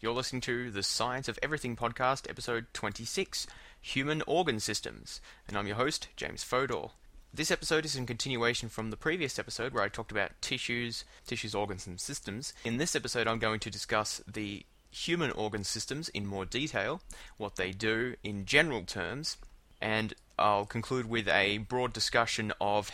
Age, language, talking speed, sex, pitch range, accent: 20-39, English, 170 wpm, male, 95-120 Hz, Australian